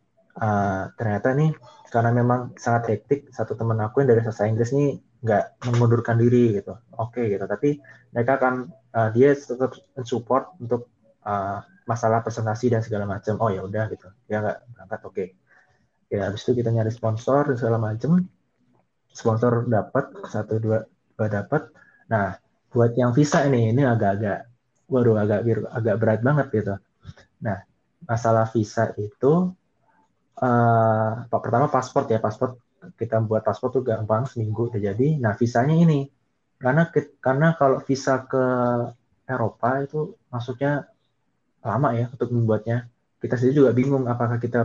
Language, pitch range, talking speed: Indonesian, 110-130 Hz, 150 wpm